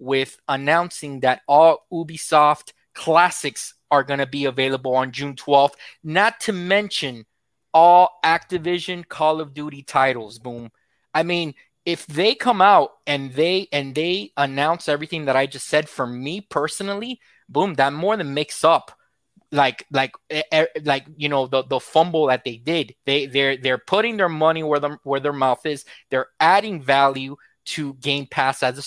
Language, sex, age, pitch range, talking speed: English, male, 20-39, 140-170 Hz, 165 wpm